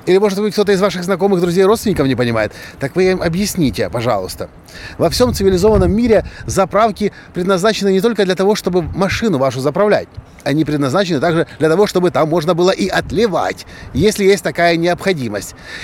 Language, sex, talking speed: Russian, male, 170 wpm